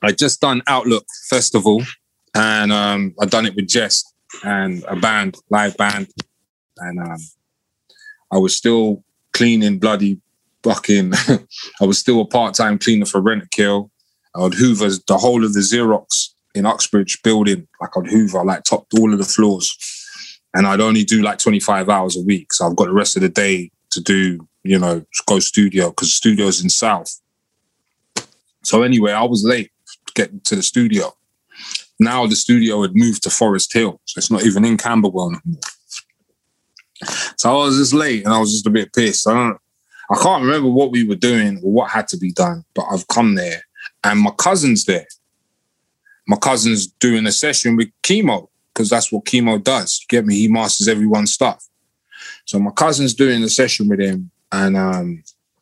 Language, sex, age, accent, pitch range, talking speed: English, male, 20-39, British, 100-125 Hz, 180 wpm